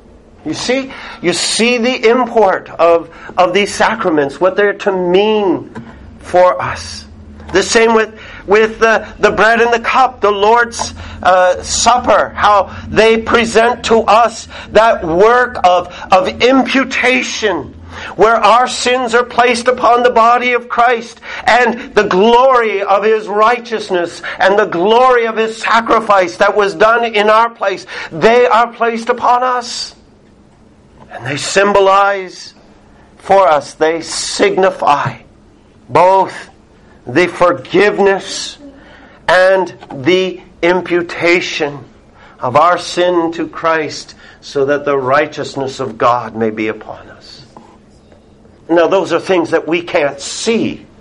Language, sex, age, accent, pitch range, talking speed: English, male, 50-69, American, 160-225 Hz, 130 wpm